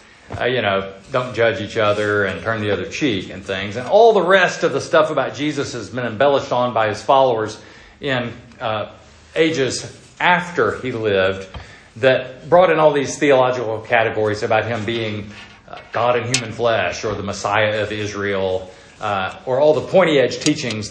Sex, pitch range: male, 110-145 Hz